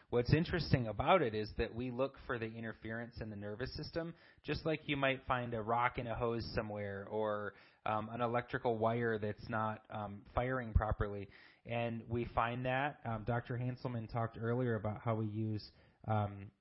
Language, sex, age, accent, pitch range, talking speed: English, male, 30-49, American, 110-130 Hz, 180 wpm